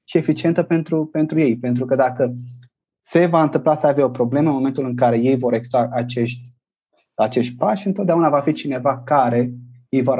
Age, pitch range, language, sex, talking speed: 20-39, 125-155 Hz, English, male, 190 wpm